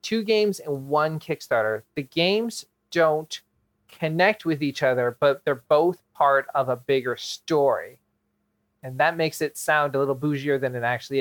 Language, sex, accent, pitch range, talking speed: English, male, American, 130-165 Hz, 165 wpm